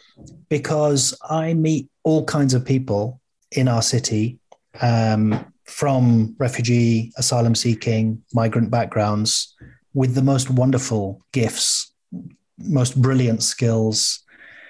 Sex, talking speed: male, 100 wpm